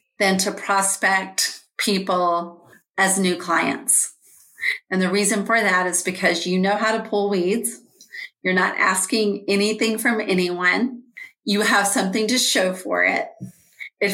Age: 40-59